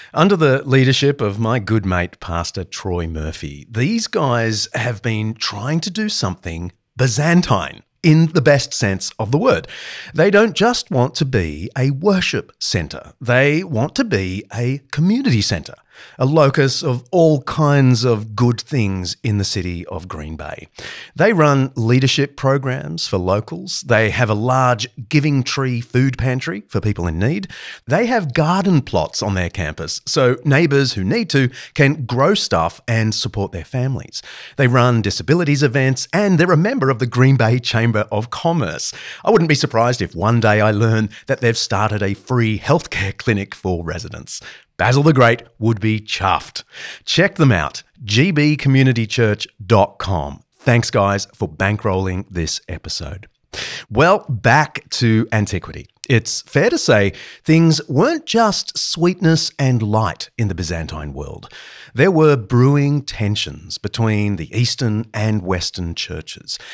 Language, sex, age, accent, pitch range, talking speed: English, male, 40-59, Australian, 100-145 Hz, 155 wpm